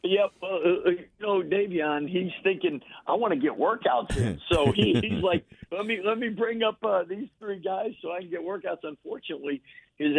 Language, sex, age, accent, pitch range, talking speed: English, male, 50-69, American, 120-155 Hz, 200 wpm